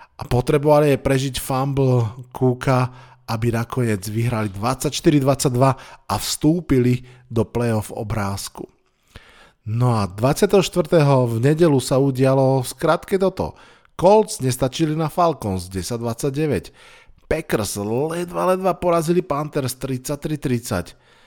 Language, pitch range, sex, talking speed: Slovak, 115-140 Hz, male, 100 wpm